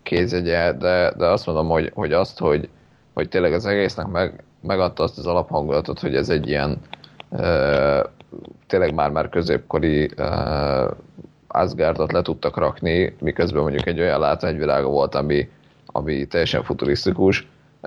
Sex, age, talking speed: male, 30-49, 135 wpm